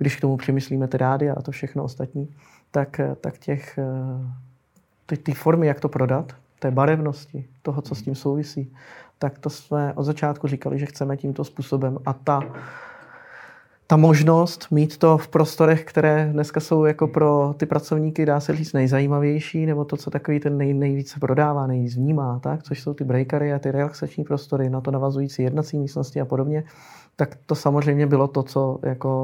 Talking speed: 180 wpm